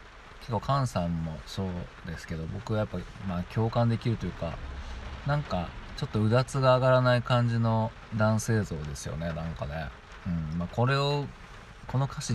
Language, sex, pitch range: Japanese, male, 90-120 Hz